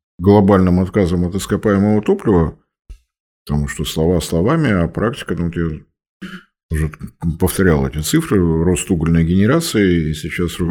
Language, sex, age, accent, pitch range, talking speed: Russian, male, 50-69, native, 80-110 Hz, 125 wpm